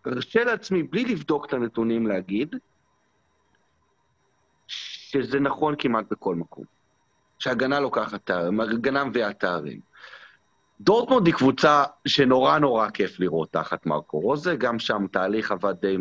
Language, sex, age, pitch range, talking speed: English, male, 40-59, 100-140 Hz, 115 wpm